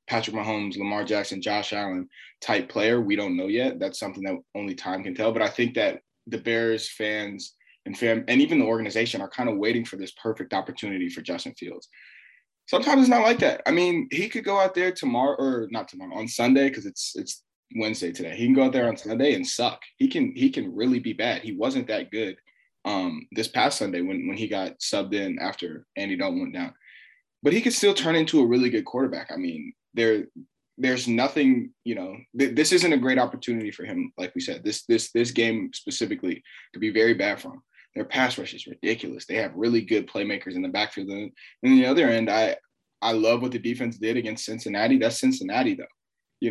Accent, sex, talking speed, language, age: American, male, 220 wpm, English, 20-39